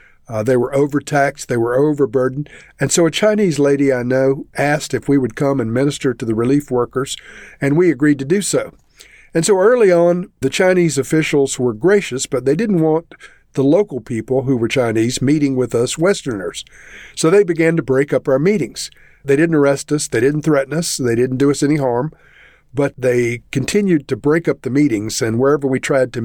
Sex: male